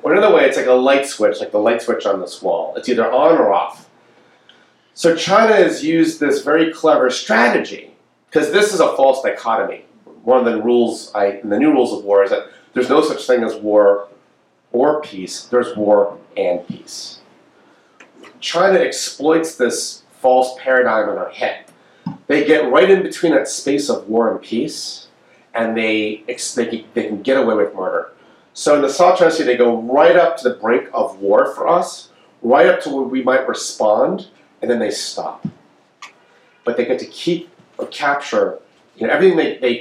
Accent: American